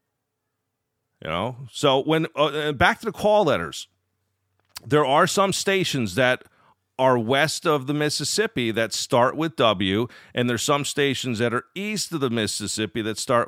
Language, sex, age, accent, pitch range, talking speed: English, male, 40-59, American, 115-150 Hz, 160 wpm